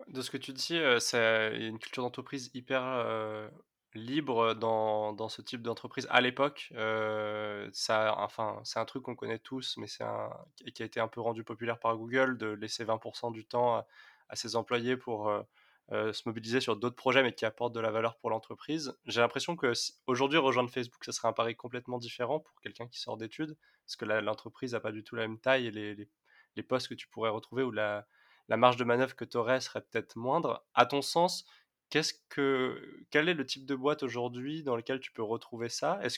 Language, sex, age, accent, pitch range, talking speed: French, male, 20-39, French, 110-130 Hz, 220 wpm